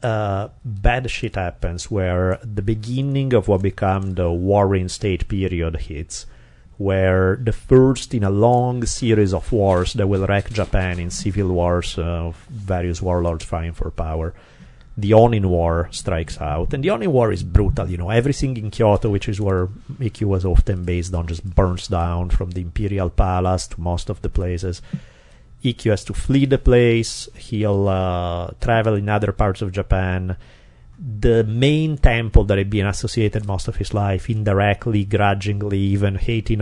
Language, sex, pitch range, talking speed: English, male, 90-115 Hz, 170 wpm